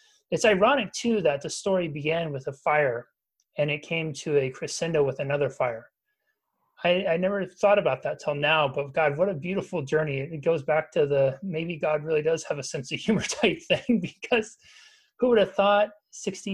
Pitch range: 145-170 Hz